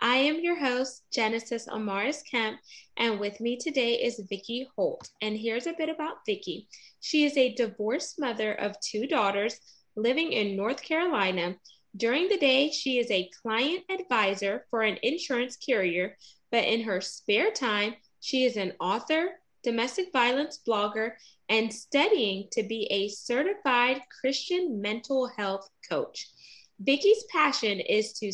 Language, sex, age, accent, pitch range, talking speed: English, female, 20-39, American, 205-275 Hz, 150 wpm